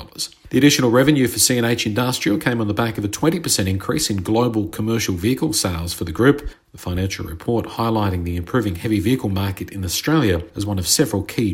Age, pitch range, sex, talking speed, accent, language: 50-69, 95-125 Hz, male, 200 wpm, Australian, English